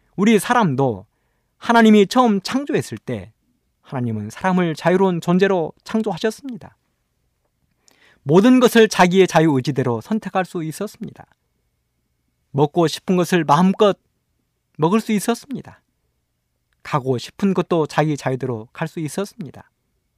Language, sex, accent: Korean, male, native